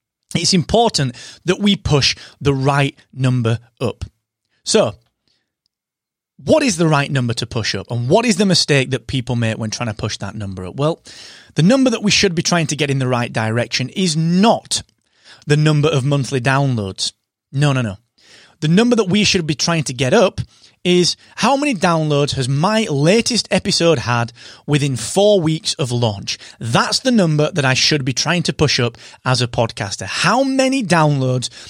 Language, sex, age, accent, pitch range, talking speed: English, male, 30-49, British, 125-190 Hz, 185 wpm